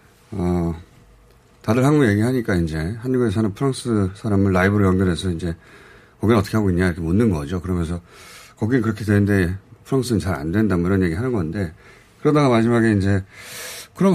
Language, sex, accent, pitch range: Korean, male, native, 90-140 Hz